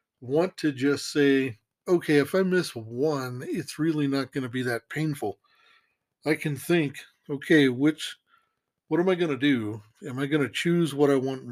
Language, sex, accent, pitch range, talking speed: English, male, American, 135-155 Hz, 190 wpm